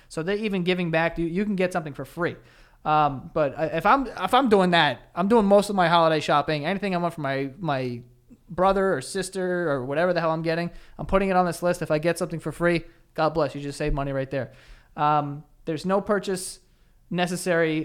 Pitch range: 140-175 Hz